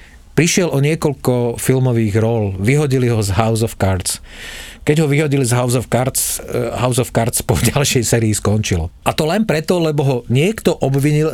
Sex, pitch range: male, 100-125 Hz